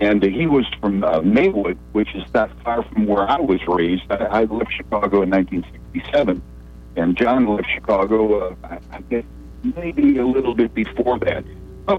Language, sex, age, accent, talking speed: English, male, 60-79, American, 190 wpm